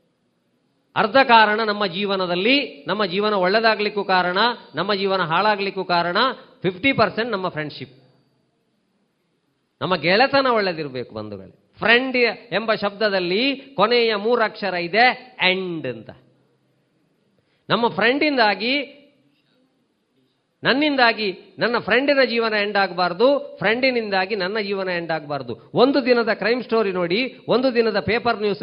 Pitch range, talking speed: 180-235 Hz, 105 wpm